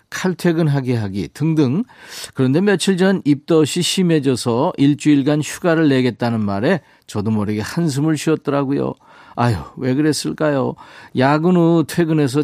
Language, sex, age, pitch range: Korean, male, 40-59, 115-155 Hz